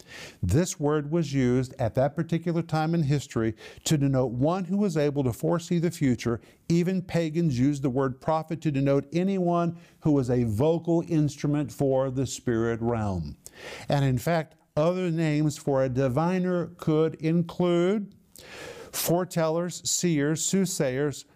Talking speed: 145 wpm